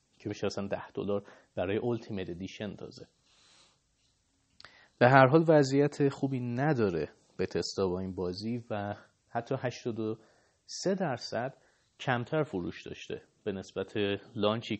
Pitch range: 105-140 Hz